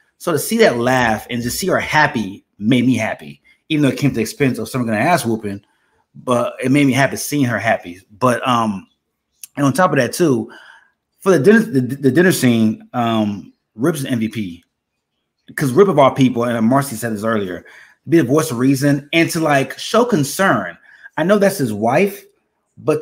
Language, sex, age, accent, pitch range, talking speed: English, male, 30-49, American, 120-155 Hz, 205 wpm